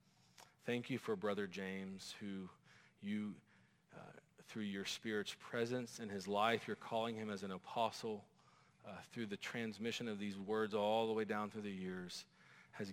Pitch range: 95-110 Hz